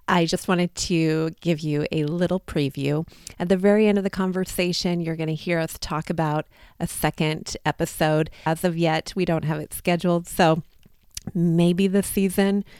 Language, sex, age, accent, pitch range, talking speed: English, female, 30-49, American, 160-175 Hz, 175 wpm